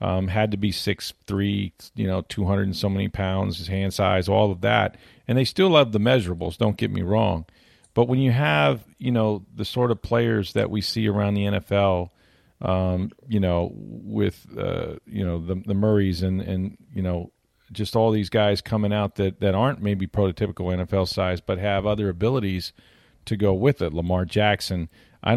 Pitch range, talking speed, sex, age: 95-110 Hz, 200 wpm, male, 40-59